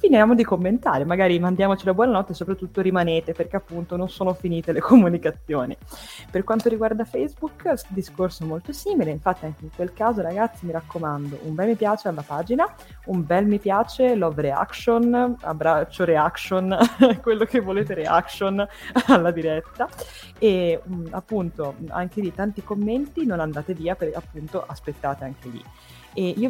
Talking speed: 155 wpm